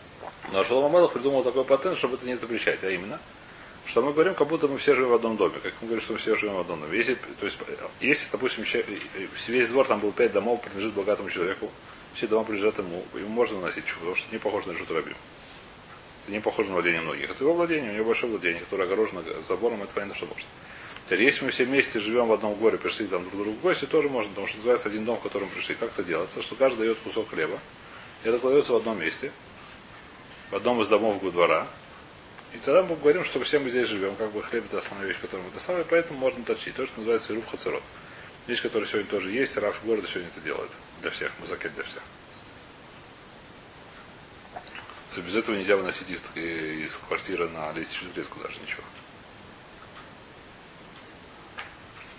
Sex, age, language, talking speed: male, 30-49, Russian, 200 wpm